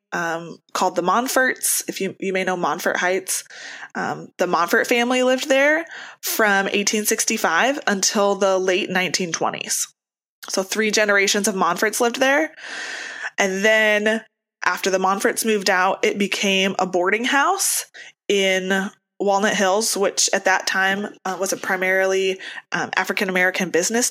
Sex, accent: female, American